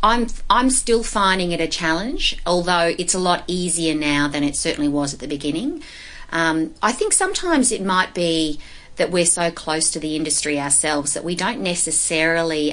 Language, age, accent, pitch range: English, 30-49, Australian, 150-180 Hz